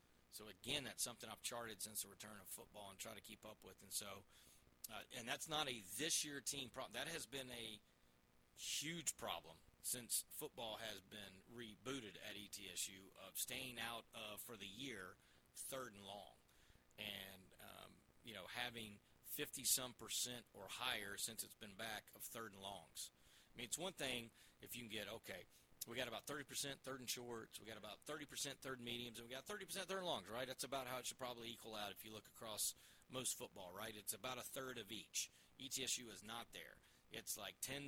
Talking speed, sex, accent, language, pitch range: 205 wpm, male, American, English, 100-130 Hz